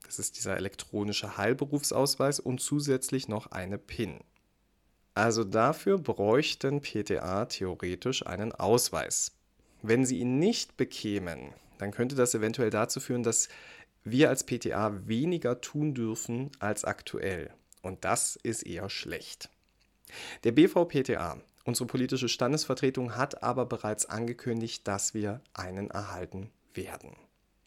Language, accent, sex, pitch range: German, German, male, 100-130 Hz